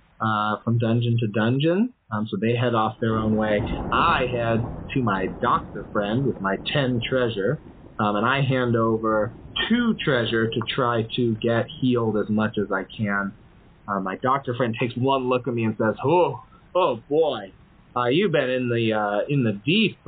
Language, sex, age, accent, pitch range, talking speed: English, male, 30-49, American, 110-135 Hz, 190 wpm